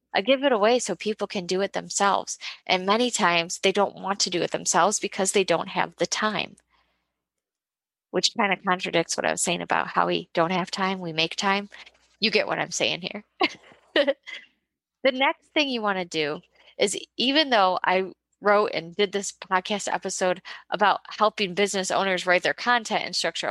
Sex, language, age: female, English, 20-39